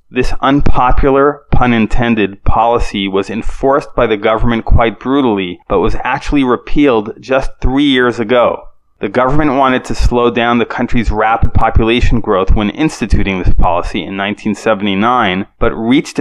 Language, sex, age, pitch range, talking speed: English, male, 30-49, 105-125 Hz, 145 wpm